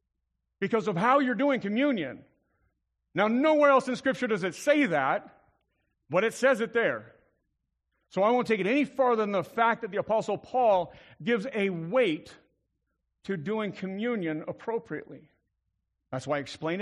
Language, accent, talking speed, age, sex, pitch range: English, American, 160 wpm, 50-69, male, 180-240 Hz